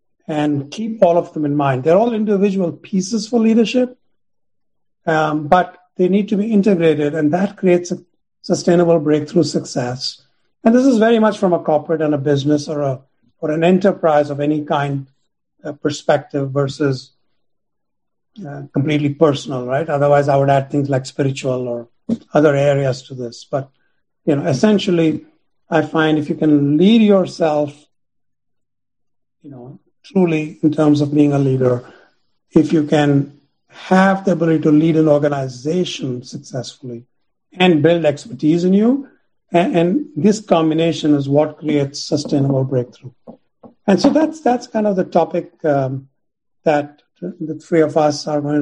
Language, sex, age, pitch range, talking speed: English, male, 50-69, 140-175 Hz, 155 wpm